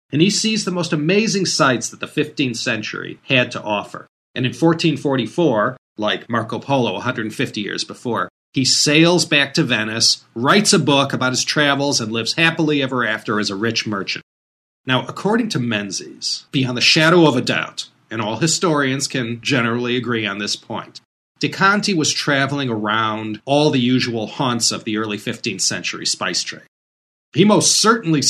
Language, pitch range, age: English, 110-155 Hz, 40-59